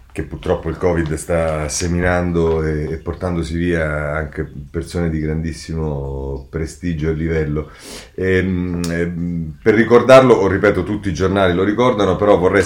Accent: native